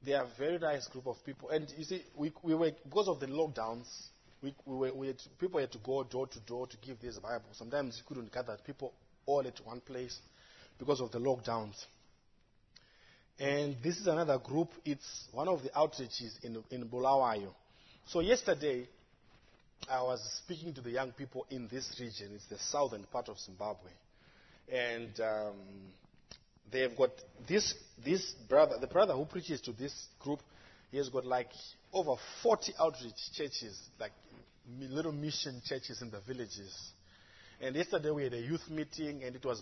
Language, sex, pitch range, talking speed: English, male, 120-150 Hz, 180 wpm